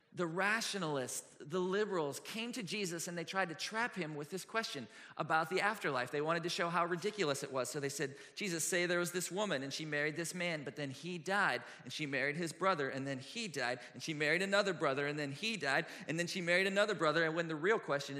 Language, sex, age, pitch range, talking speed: English, male, 40-59, 145-210 Hz, 245 wpm